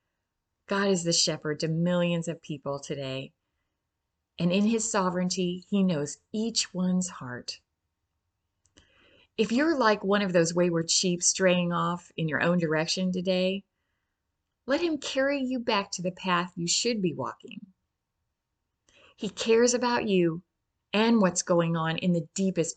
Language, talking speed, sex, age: English, 150 wpm, female, 30-49